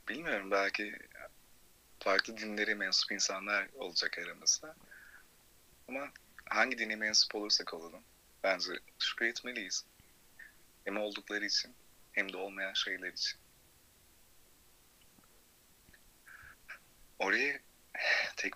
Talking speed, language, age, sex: 85 wpm, Turkish, 30-49, male